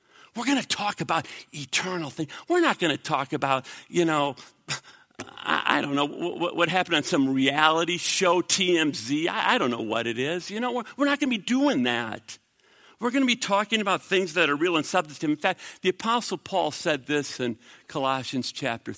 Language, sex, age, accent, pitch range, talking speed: English, male, 50-69, American, 165-245 Hz, 210 wpm